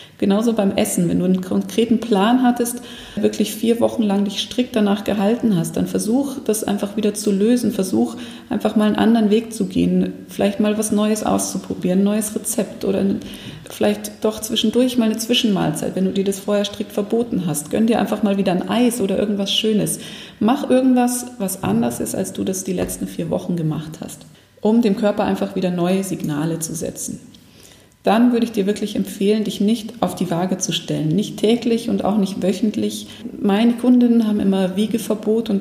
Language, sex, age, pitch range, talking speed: German, female, 40-59, 195-225 Hz, 190 wpm